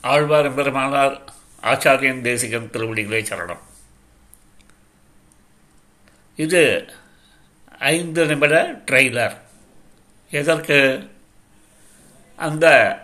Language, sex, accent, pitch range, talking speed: Tamil, male, native, 135-165 Hz, 50 wpm